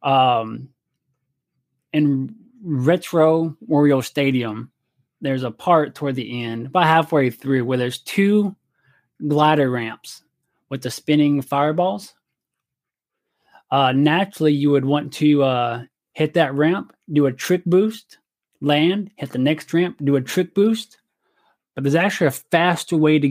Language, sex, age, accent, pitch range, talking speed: English, male, 20-39, American, 130-155 Hz, 135 wpm